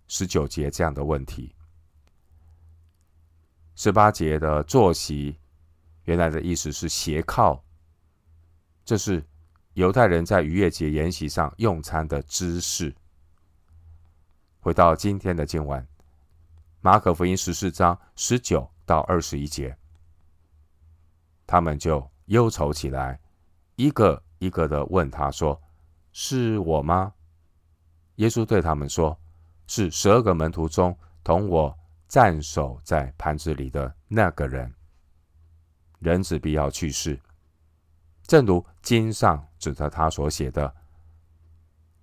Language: Chinese